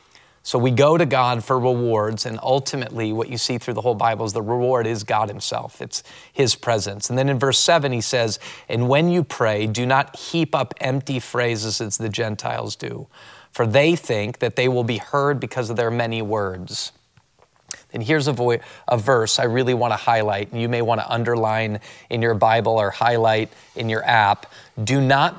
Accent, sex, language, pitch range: American, male, English, 115-130 Hz